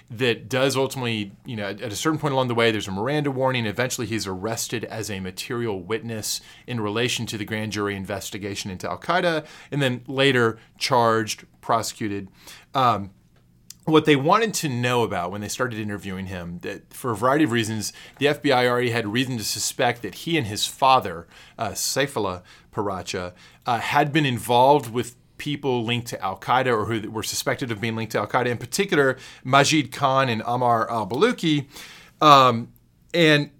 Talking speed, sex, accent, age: 170 wpm, male, American, 30-49